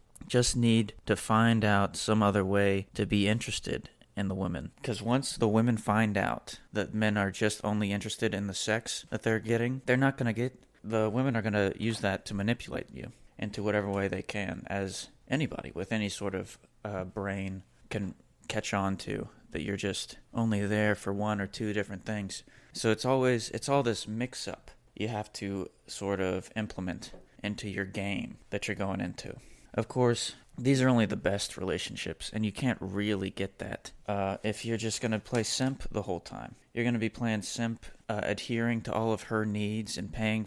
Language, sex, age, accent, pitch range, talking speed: English, male, 30-49, American, 100-115 Hz, 195 wpm